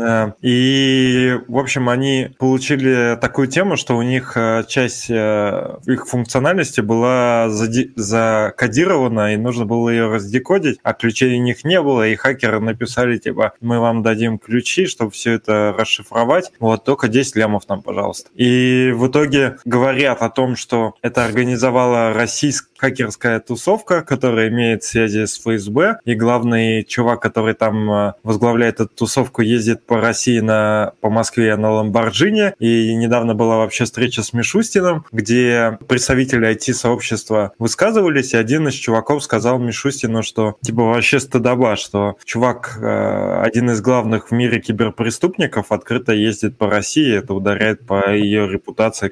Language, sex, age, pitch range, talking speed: Russian, male, 20-39, 110-130 Hz, 140 wpm